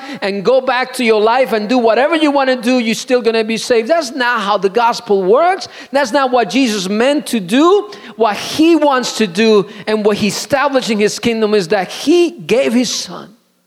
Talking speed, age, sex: 215 wpm, 40-59, male